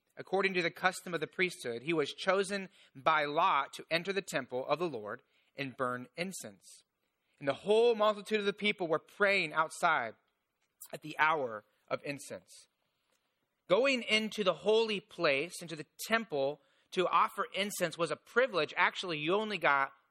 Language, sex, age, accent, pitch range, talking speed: English, male, 30-49, American, 165-215 Hz, 165 wpm